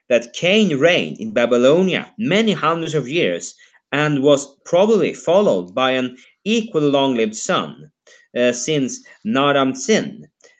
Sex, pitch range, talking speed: male, 120-160 Hz, 130 wpm